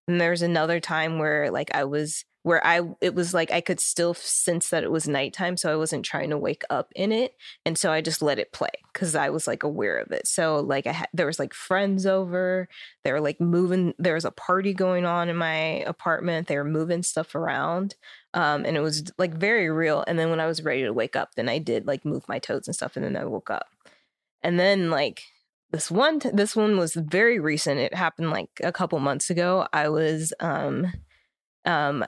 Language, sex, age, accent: English, female, 20-39, American